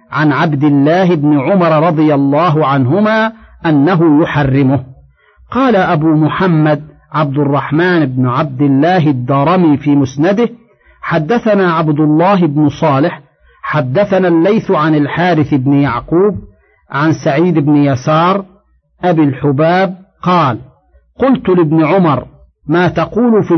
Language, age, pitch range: Arabic, 50-69, 145-180 Hz